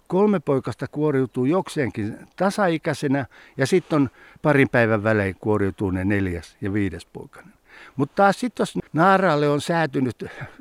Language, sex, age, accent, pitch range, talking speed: Finnish, male, 60-79, native, 145-190 Hz, 125 wpm